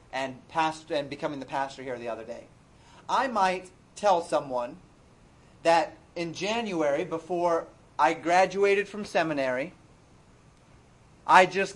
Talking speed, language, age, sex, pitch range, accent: 120 wpm, English, 30-49, male, 150-190 Hz, American